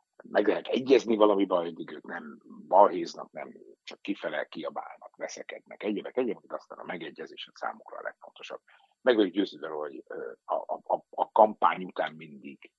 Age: 60-79